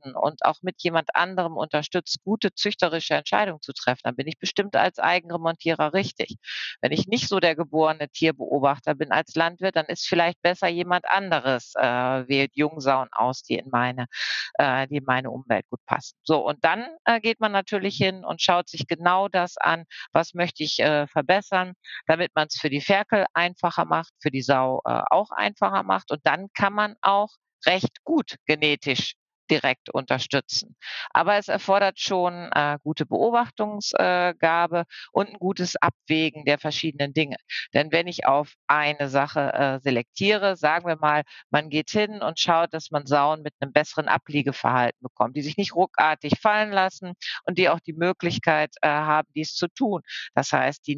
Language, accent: German, German